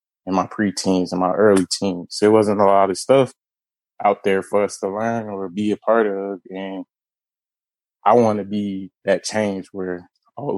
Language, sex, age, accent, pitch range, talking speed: English, male, 20-39, American, 100-120 Hz, 195 wpm